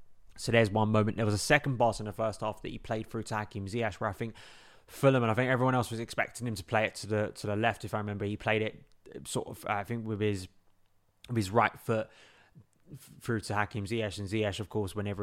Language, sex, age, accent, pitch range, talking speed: English, male, 20-39, British, 105-115 Hz, 255 wpm